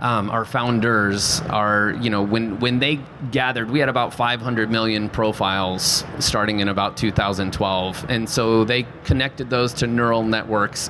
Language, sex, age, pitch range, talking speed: English, male, 30-49, 110-135 Hz, 155 wpm